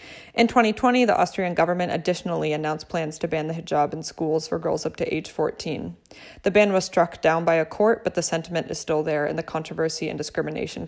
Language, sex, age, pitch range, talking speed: English, female, 20-39, 160-185 Hz, 215 wpm